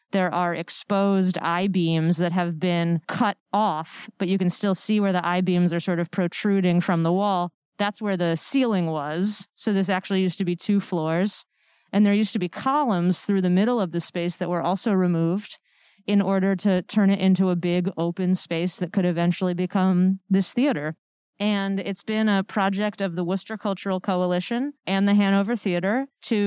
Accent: American